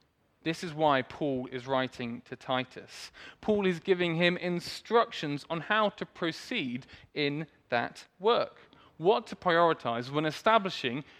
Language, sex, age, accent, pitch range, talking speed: English, male, 20-39, British, 140-185 Hz, 135 wpm